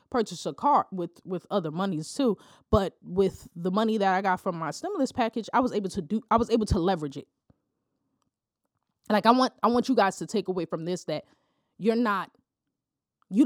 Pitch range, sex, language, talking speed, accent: 170-235 Hz, female, English, 205 wpm, American